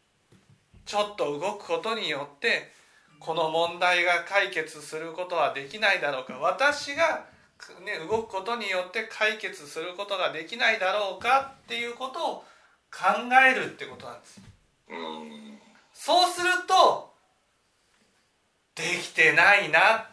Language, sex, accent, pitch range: Japanese, male, native, 175-280 Hz